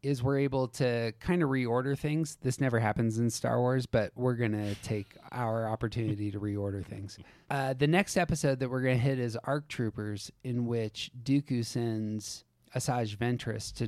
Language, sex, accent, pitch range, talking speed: English, male, American, 105-130 Hz, 175 wpm